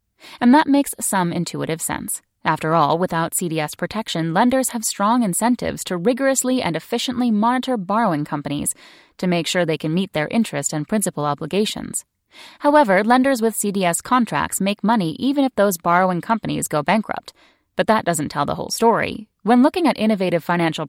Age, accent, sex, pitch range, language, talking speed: 10-29, American, female, 165-235 Hz, English, 170 wpm